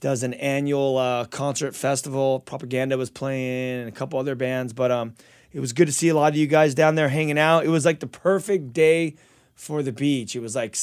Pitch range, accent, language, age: 125-155 Hz, American, English, 20-39